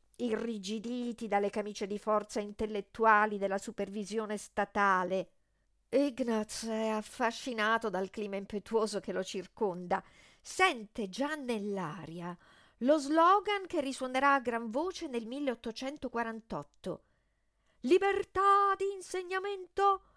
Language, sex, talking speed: Italian, female, 100 wpm